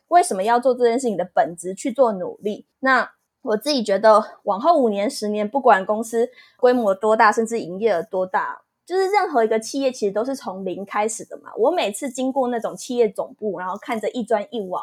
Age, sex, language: 20-39, female, Chinese